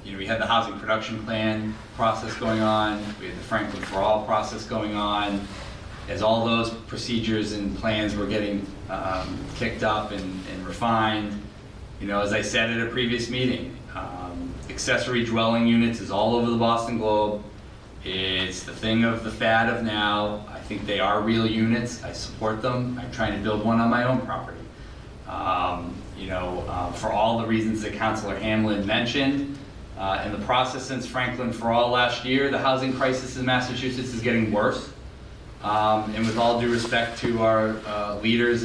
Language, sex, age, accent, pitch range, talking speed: English, male, 30-49, American, 105-115 Hz, 185 wpm